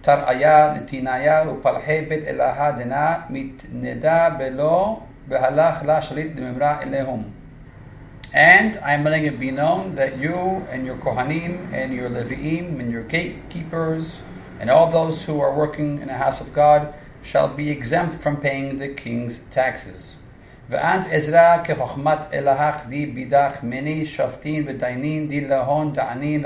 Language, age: English, 40-59